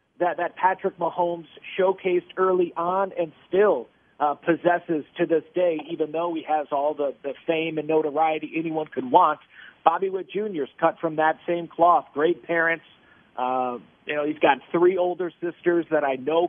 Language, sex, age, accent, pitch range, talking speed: English, male, 40-59, American, 160-195 Hz, 175 wpm